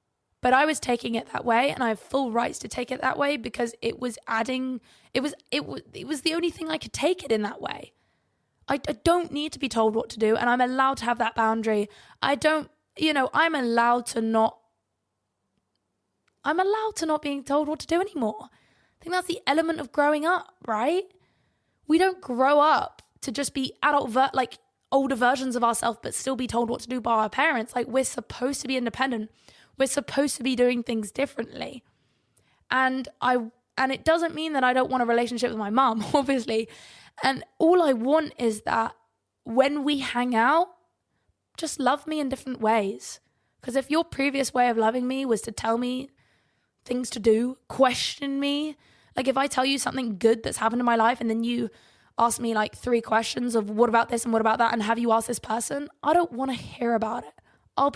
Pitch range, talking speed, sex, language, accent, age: 230-285 Hz, 215 wpm, female, English, British, 20-39